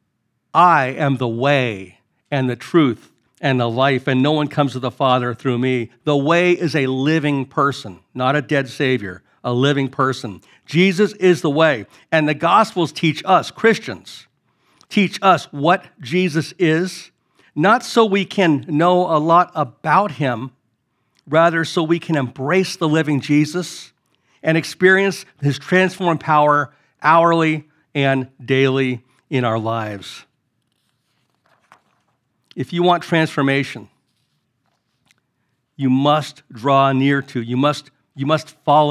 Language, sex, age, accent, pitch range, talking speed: English, male, 50-69, American, 130-165 Hz, 135 wpm